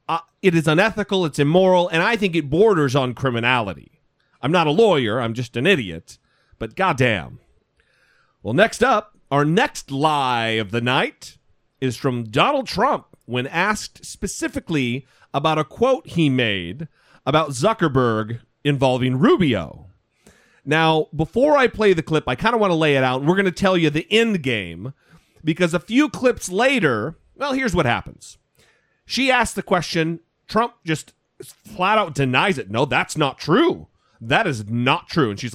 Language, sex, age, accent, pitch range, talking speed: English, male, 40-59, American, 130-190 Hz, 165 wpm